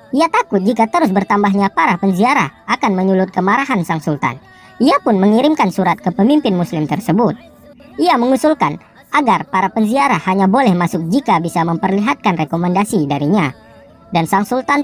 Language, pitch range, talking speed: Indonesian, 170-220 Hz, 145 wpm